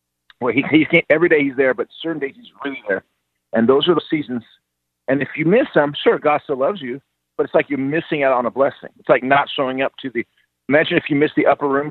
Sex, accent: male, American